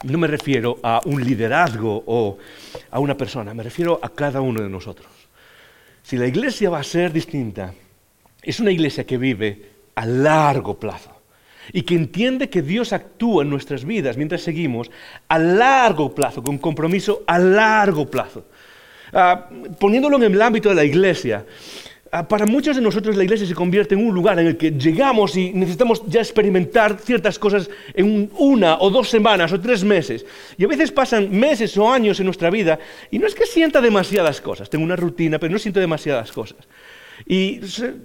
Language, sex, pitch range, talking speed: English, male, 140-215 Hz, 180 wpm